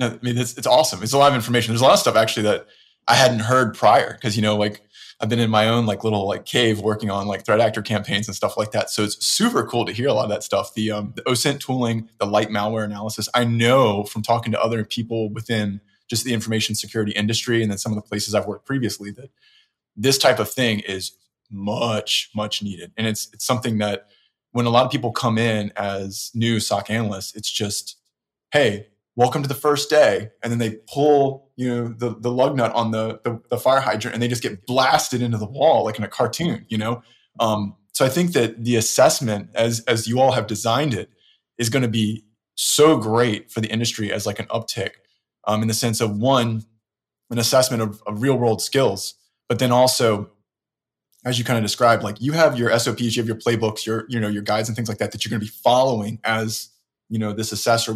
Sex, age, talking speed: male, 20-39, 235 wpm